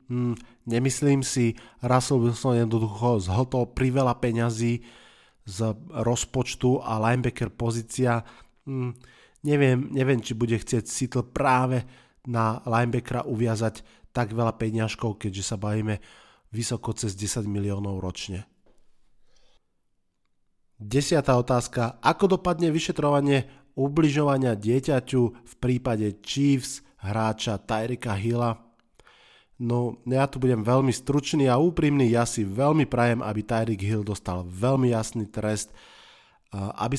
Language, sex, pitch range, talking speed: Slovak, male, 105-125 Hz, 115 wpm